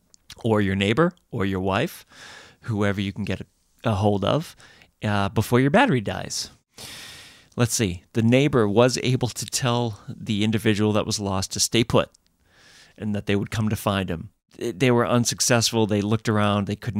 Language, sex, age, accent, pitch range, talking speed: English, male, 40-59, American, 95-115 Hz, 180 wpm